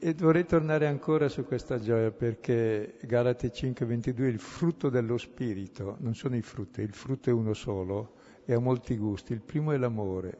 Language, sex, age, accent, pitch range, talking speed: Italian, male, 60-79, native, 105-135 Hz, 180 wpm